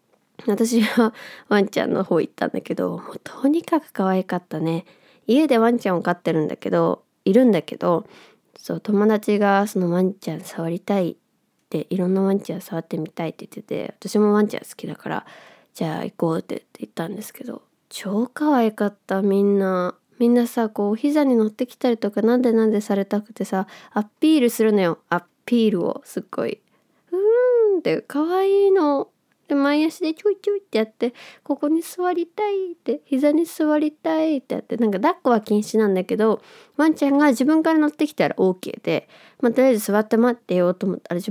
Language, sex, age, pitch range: Japanese, female, 20-39, 200-290 Hz